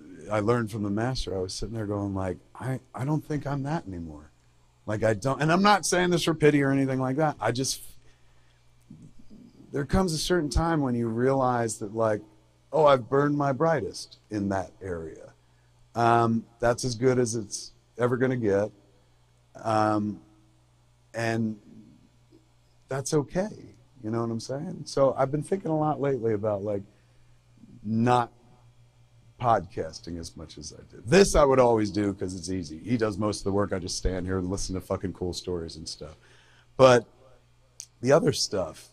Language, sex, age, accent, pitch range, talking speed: English, male, 50-69, American, 95-125 Hz, 180 wpm